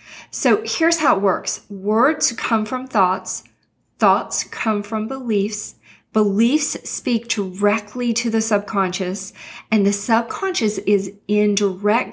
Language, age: English, 40-59